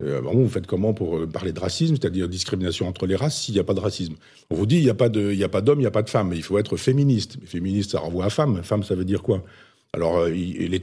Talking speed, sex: 285 wpm, male